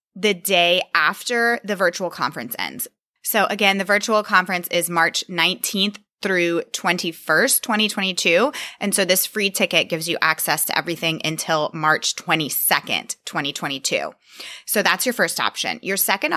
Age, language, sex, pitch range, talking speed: 20-39, English, female, 165-205 Hz, 145 wpm